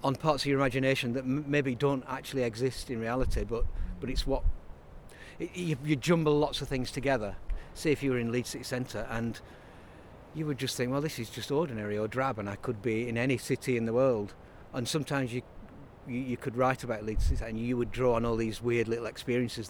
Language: English